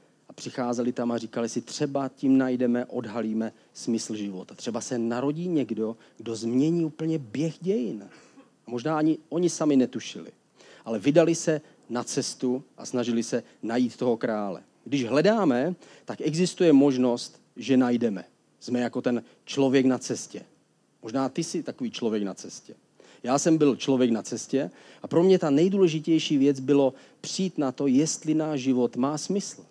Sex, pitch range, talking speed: male, 125-155 Hz, 160 wpm